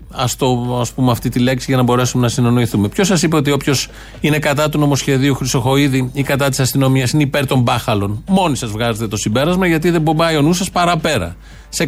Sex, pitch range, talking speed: male, 130-155 Hz, 205 wpm